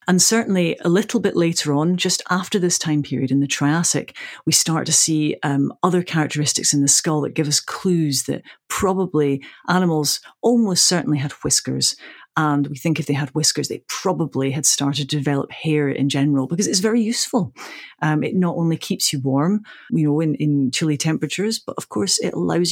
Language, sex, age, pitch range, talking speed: English, female, 40-59, 145-180 Hz, 195 wpm